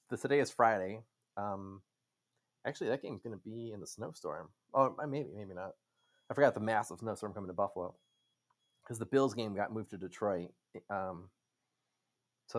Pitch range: 105-140 Hz